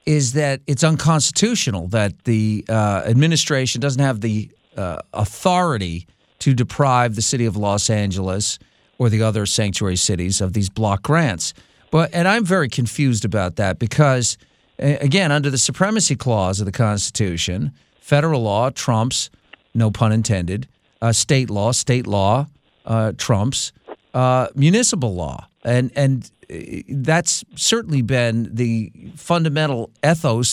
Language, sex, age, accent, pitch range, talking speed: English, male, 50-69, American, 110-145 Hz, 140 wpm